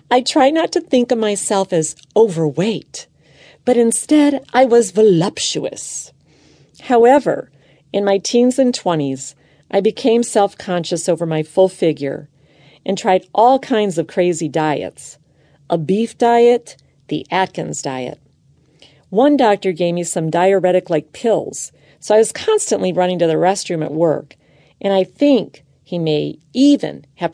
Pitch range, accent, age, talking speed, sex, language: 155-220 Hz, American, 40-59, 140 wpm, female, English